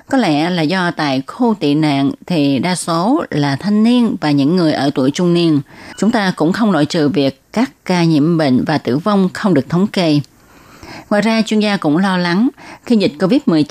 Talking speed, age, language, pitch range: 215 wpm, 20-39, Vietnamese, 150-220 Hz